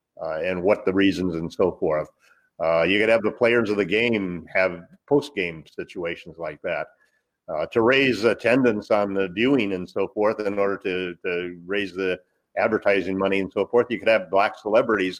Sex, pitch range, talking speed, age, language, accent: male, 95-115 Hz, 190 wpm, 50-69, English, American